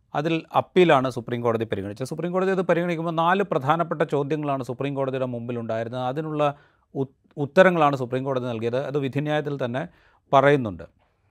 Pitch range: 125-155 Hz